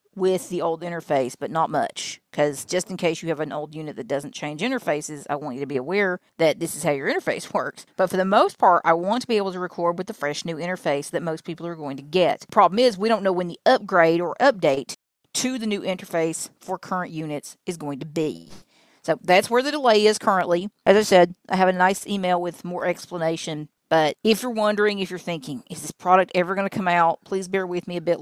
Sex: female